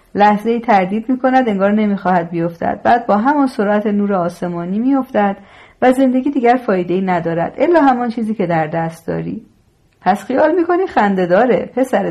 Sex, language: female, Persian